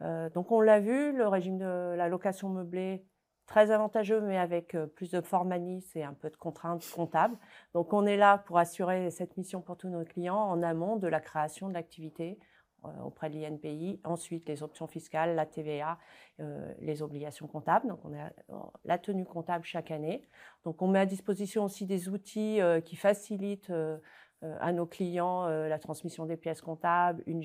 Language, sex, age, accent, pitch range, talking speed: French, female, 40-59, French, 160-190 Hz, 180 wpm